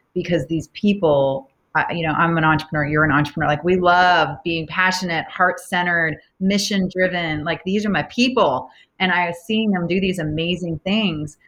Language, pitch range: English, 145-175 Hz